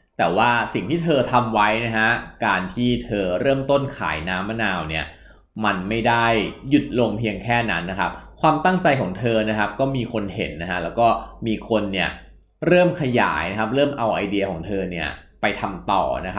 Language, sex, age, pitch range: Thai, male, 20-39, 100-135 Hz